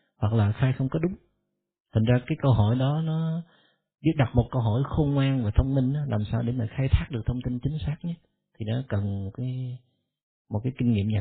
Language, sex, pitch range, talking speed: Vietnamese, male, 105-135 Hz, 245 wpm